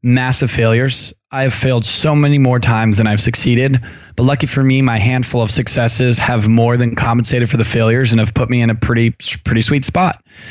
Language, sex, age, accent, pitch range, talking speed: English, male, 20-39, American, 115-135 Hz, 210 wpm